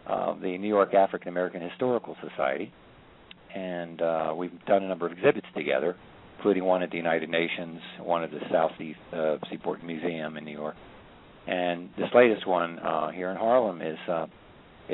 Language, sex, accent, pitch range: English, male, American, 80-95 Hz